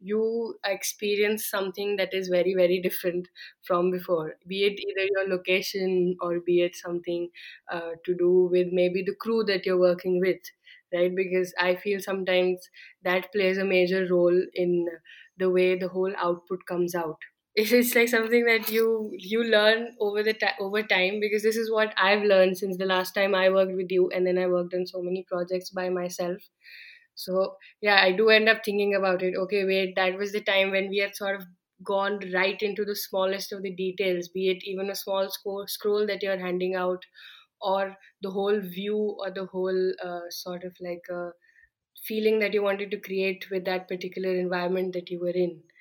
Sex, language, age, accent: female, English, 10-29, Indian